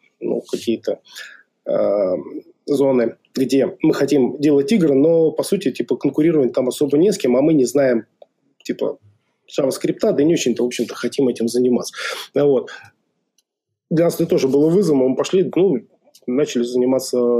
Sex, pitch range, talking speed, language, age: male, 120-165 Hz, 160 wpm, Russian, 20-39